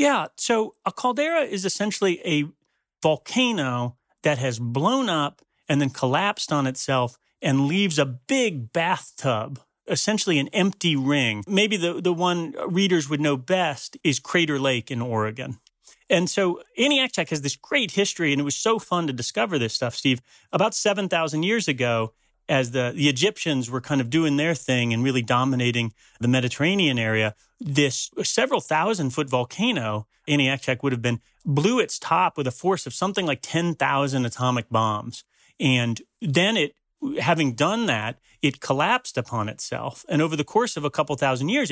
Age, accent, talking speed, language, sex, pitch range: 40-59, American, 165 wpm, English, male, 130-175 Hz